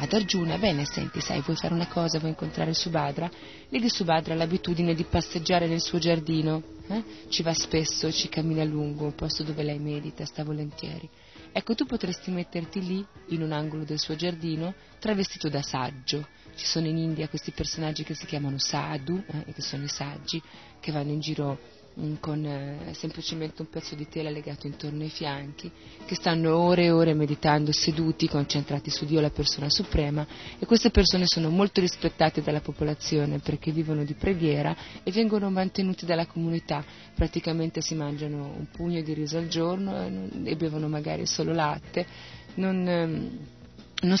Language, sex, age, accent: Italian, female, 30-49, native